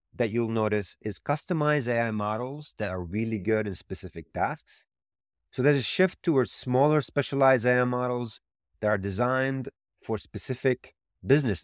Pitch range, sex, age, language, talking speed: 100-135 Hz, male, 30-49, English, 150 wpm